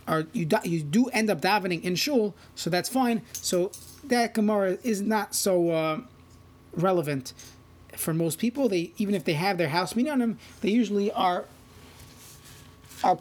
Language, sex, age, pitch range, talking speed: English, male, 30-49, 165-220 Hz, 175 wpm